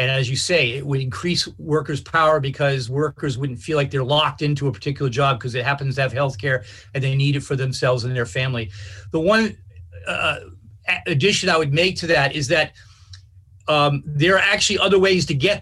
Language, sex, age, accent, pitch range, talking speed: English, male, 40-59, American, 135-175 Hz, 210 wpm